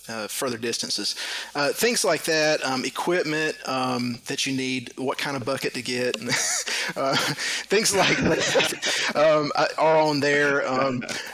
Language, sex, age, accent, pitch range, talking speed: English, male, 30-49, American, 125-150 Hz, 155 wpm